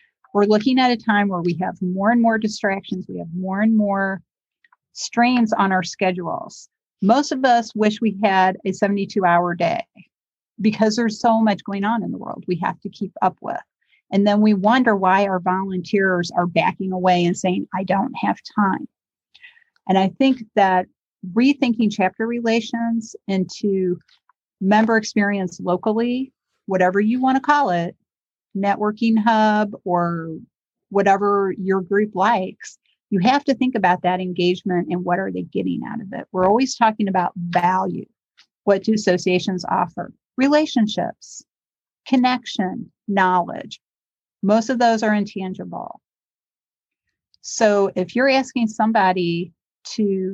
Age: 40-59